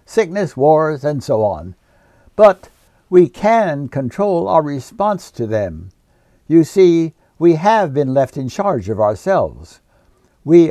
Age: 60-79